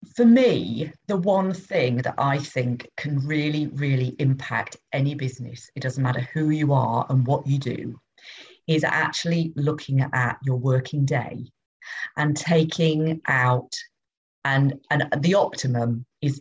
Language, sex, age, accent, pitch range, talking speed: English, female, 40-59, British, 130-155 Hz, 145 wpm